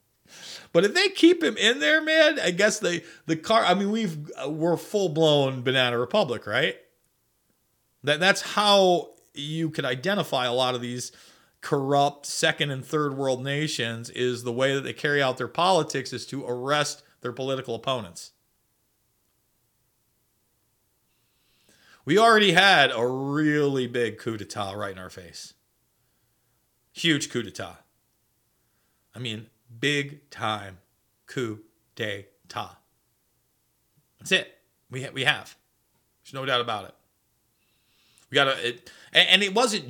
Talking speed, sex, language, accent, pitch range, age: 140 wpm, male, English, American, 120-160 Hz, 40-59